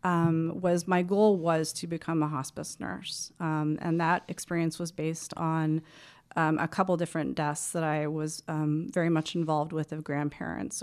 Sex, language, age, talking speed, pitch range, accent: female, English, 30-49, 175 wpm, 155-180 Hz, American